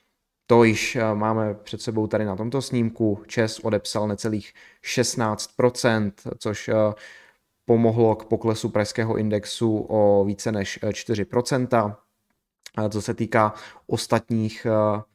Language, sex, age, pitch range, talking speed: Czech, male, 20-39, 100-115 Hz, 105 wpm